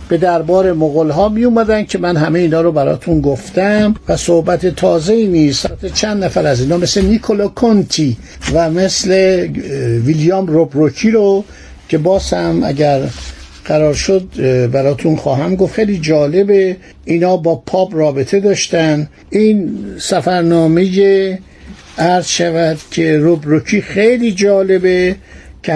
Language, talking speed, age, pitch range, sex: Persian, 125 wpm, 60-79, 145-190 Hz, male